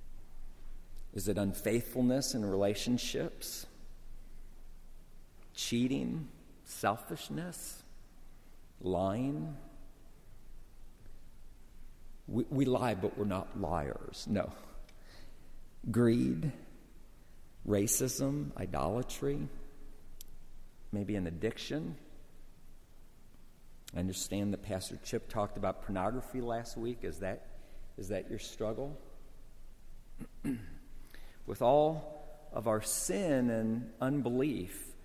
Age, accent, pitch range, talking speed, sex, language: 50-69, American, 105-135 Hz, 75 wpm, male, English